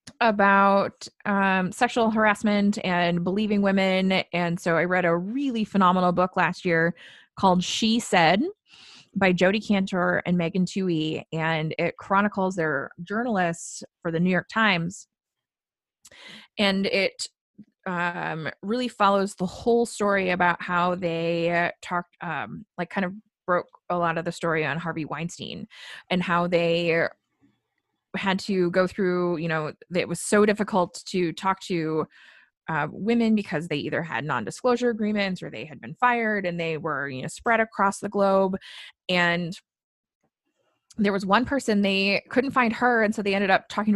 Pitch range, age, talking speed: 170-210 Hz, 20-39, 155 wpm